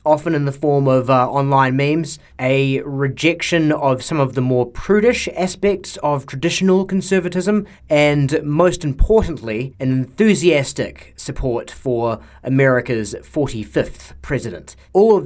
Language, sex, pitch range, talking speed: English, male, 130-180 Hz, 125 wpm